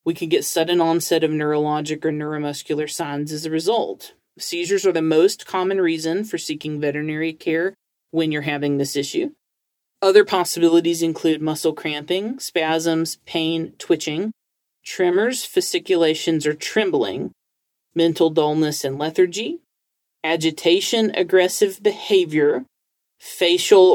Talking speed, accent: 120 wpm, American